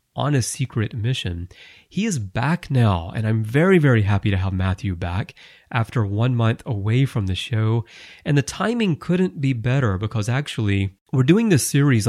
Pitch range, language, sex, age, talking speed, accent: 100-135 Hz, English, male, 30-49, 180 wpm, American